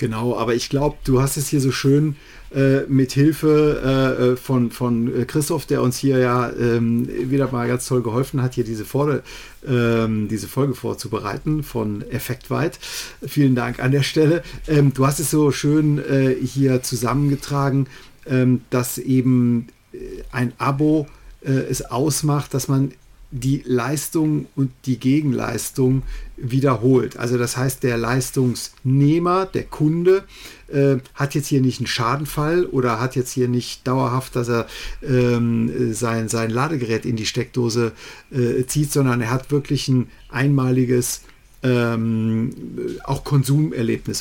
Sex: male